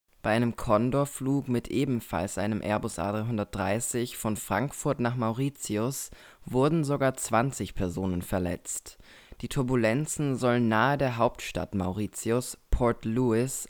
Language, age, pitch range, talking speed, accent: German, 20-39, 105-130 Hz, 115 wpm, German